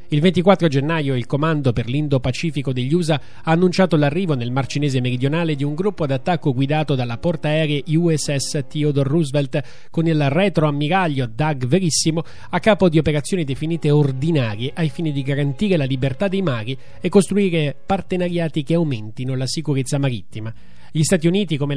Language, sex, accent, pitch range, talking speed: Italian, male, native, 140-175 Hz, 155 wpm